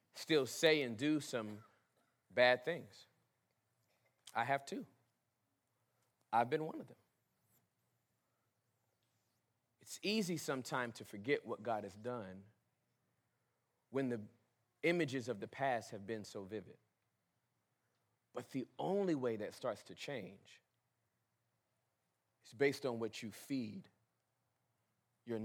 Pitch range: 105-130 Hz